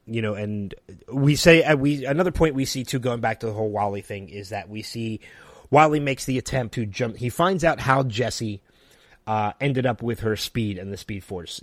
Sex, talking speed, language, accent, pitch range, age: male, 215 wpm, English, American, 100-135 Hz, 30-49